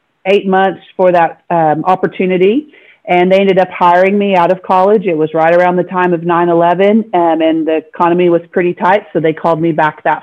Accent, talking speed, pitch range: American, 210 wpm, 165-195 Hz